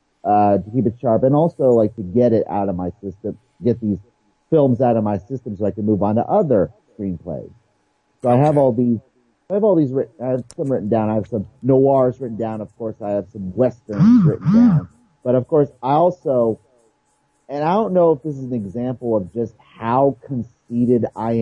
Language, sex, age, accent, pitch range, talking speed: English, male, 30-49, American, 110-145 Hz, 220 wpm